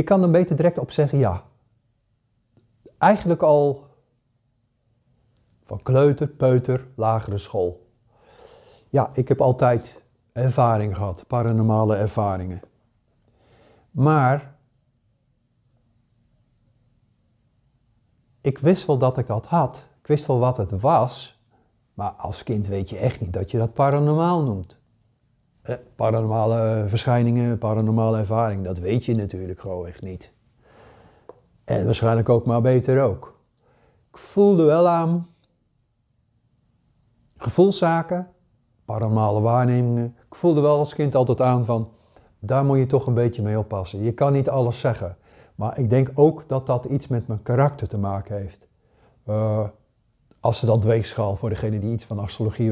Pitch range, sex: 110-130 Hz, male